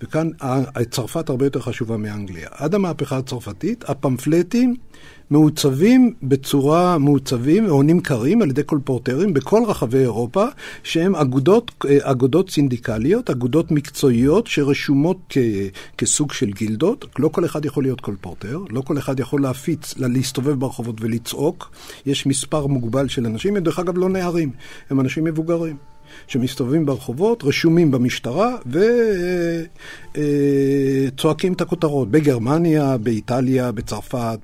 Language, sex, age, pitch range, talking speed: Hebrew, male, 60-79, 125-165 Hz, 120 wpm